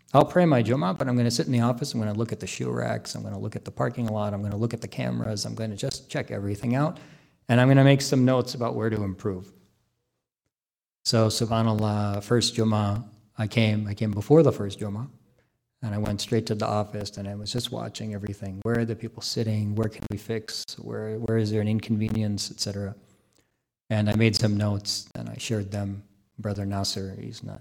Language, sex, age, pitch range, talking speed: English, male, 40-59, 105-125 Hz, 235 wpm